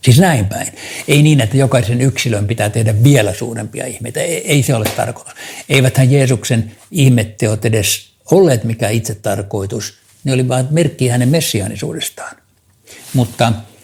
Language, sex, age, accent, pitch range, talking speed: Finnish, male, 60-79, native, 105-130 Hz, 140 wpm